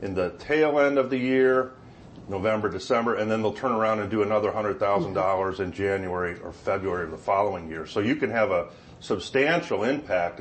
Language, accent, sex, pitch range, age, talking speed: English, American, male, 95-125 Hz, 40-59, 190 wpm